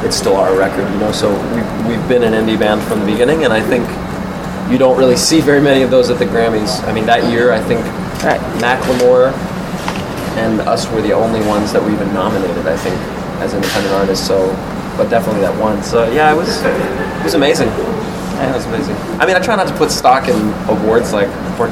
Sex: male